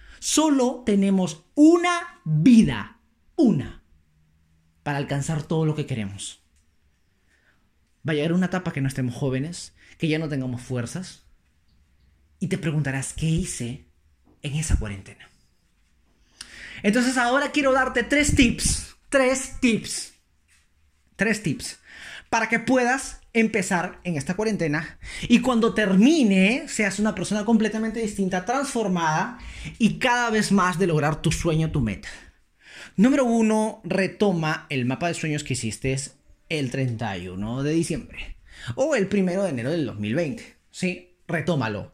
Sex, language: male, Spanish